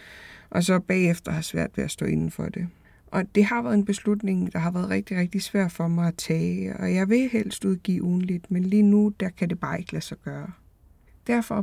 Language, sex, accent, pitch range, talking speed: Danish, female, native, 170-210 Hz, 230 wpm